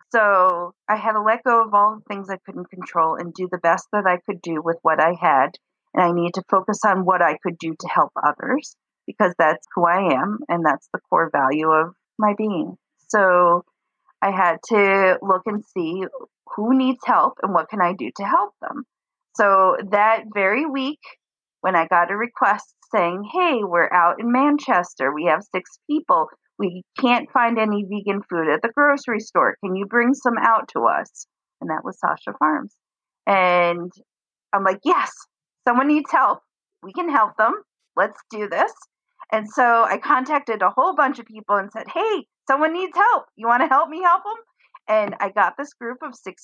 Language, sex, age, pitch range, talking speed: English, female, 40-59, 185-275 Hz, 200 wpm